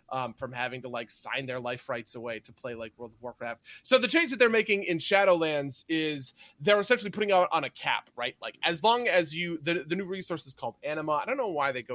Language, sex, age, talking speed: English, male, 20-39, 255 wpm